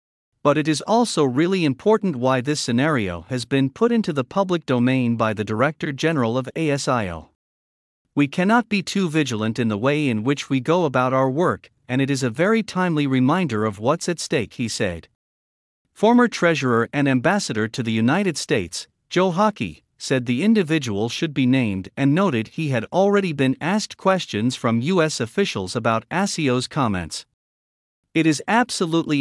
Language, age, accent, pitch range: English, 50-69, American, 115-175 Hz